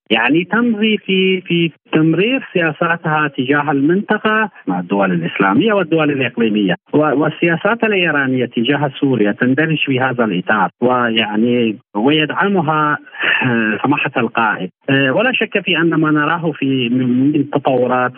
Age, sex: 40-59, male